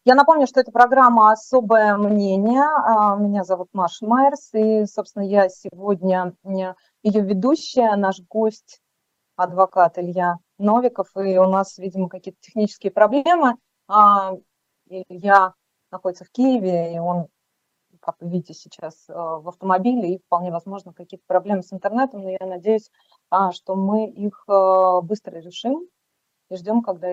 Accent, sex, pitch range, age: native, female, 185-215 Hz, 20-39